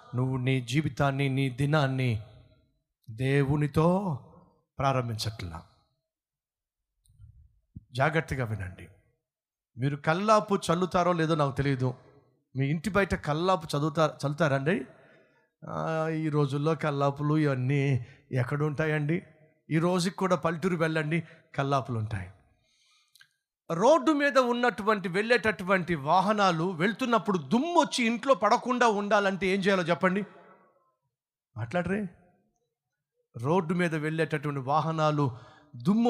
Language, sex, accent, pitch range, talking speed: Telugu, male, native, 135-185 Hz, 90 wpm